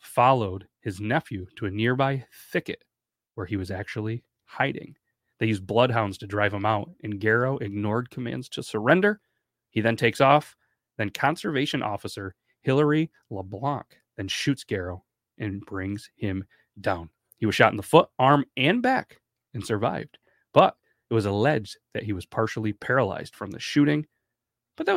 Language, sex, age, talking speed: English, male, 30-49, 160 wpm